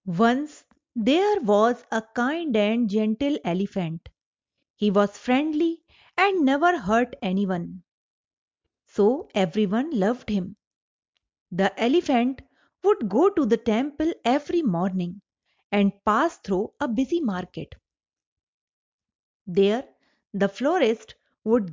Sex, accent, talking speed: female, Indian, 105 wpm